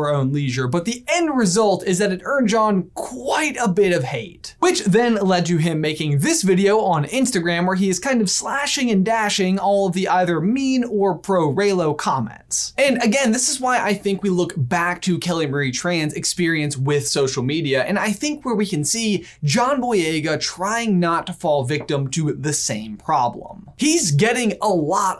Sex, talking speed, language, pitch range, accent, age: male, 200 wpm, English, 150-205 Hz, American, 20-39